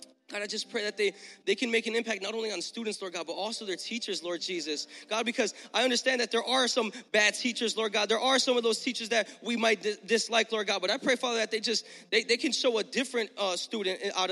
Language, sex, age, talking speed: English, male, 20-39, 270 wpm